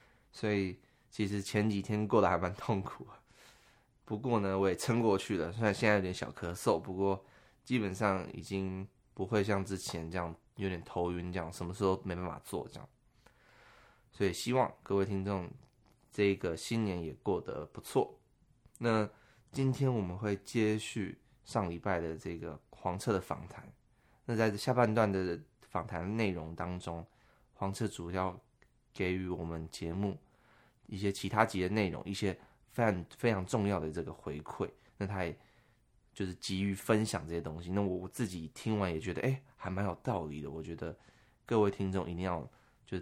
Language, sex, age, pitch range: Chinese, male, 20-39, 90-110 Hz